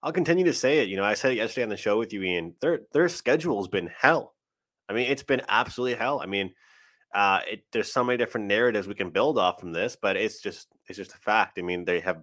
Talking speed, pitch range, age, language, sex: 270 wpm, 95-120 Hz, 20-39, English, male